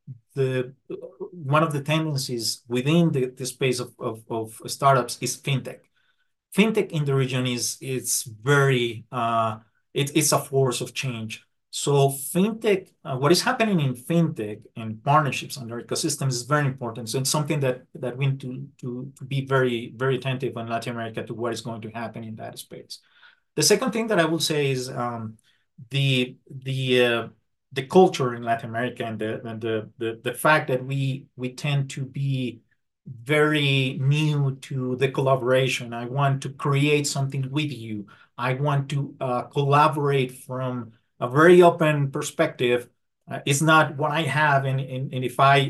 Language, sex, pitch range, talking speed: English, male, 125-150 Hz, 175 wpm